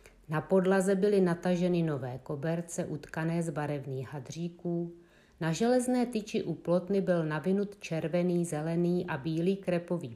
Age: 50-69